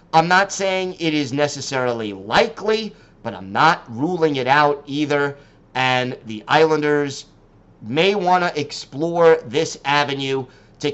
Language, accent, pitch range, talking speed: English, American, 135-165 Hz, 130 wpm